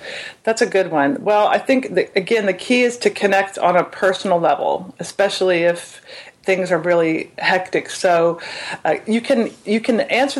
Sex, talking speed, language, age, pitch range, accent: female, 180 wpm, English, 40-59, 180-220 Hz, American